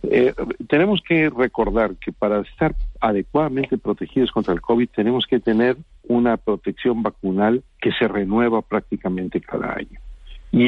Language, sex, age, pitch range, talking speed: Spanish, male, 50-69, 100-130 Hz, 140 wpm